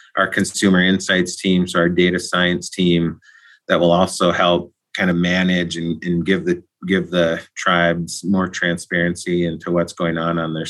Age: 30-49